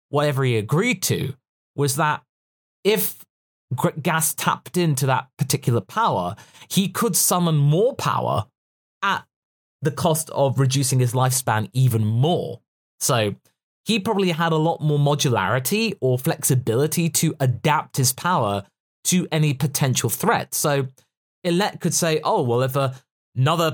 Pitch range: 130-180 Hz